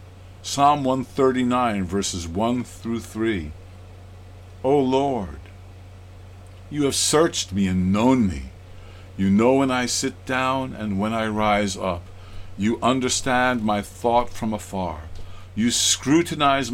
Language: English